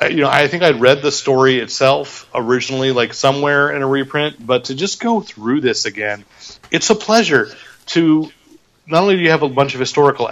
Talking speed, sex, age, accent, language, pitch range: 210 wpm, male, 40-59, American, English, 115-150 Hz